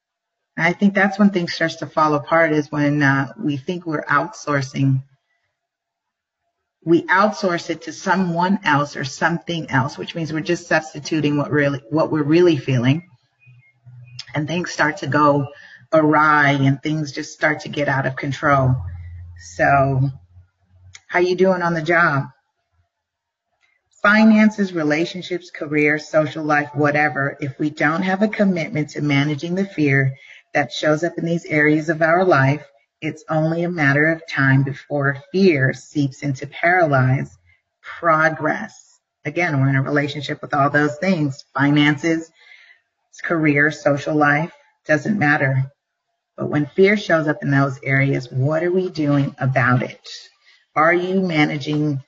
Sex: female